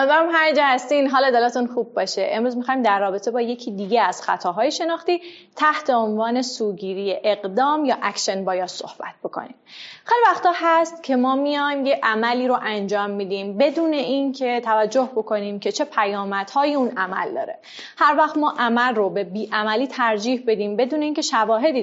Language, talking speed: Persian, 170 wpm